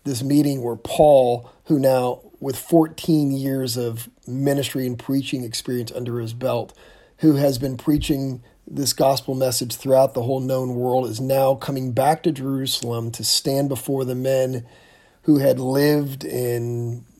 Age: 40-59